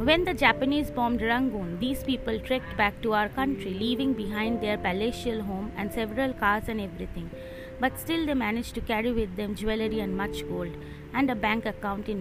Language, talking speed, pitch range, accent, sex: English, 190 wpm, 210-260 Hz, Indian, female